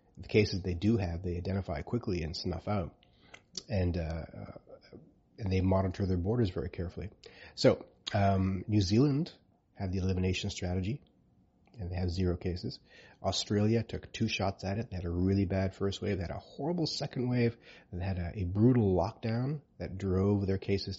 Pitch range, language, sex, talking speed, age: 95-110 Hz, English, male, 185 wpm, 30-49